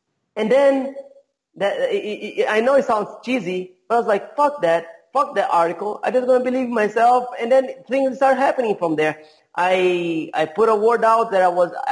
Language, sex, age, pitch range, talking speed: English, male, 30-49, 195-255 Hz, 190 wpm